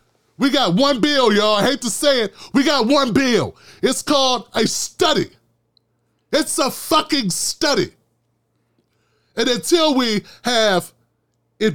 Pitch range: 195-255 Hz